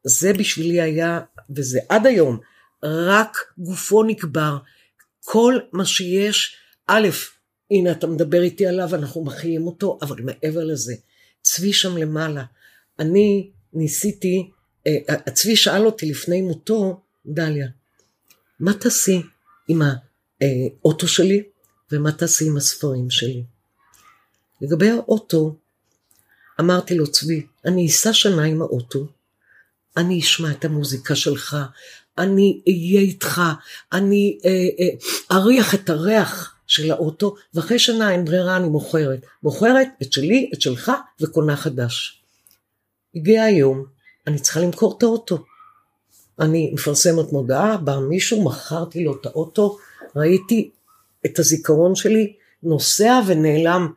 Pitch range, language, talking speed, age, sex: 145-190 Hz, Hebrew, 120 wpm, 50-69, female